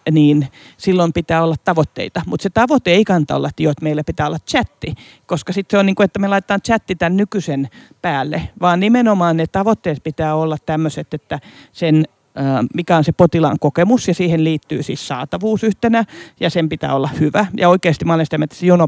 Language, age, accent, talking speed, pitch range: Finnish, 40-59, native, 190 wpm, 155-225 Hz